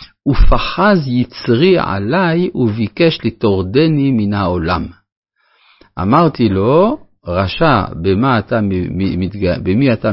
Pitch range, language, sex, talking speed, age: 100-145 Hz, Hebrew, male, 75 wpm, 50-69